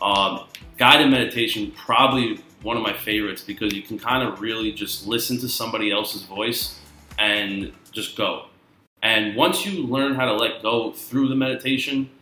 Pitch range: 110-135 Hz